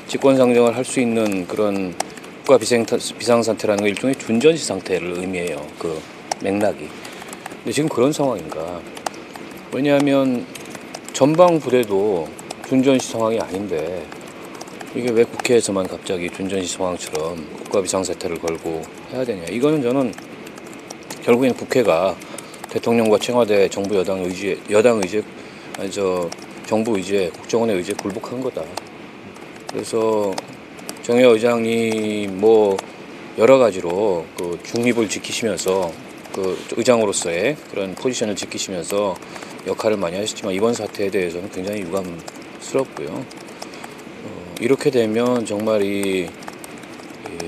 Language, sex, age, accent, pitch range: Korean, male, 40-59, native, 95-120 Hz